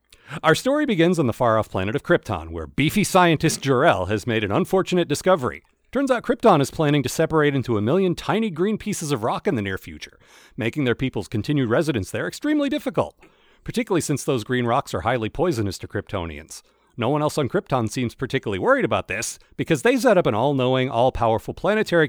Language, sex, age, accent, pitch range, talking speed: English, male, 40-59, American, 110-170 Hz, 200 wpm